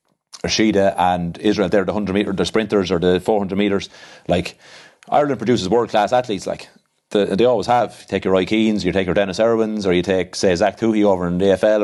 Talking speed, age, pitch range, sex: 220 wpm, 30-49, 90-105 Hz, male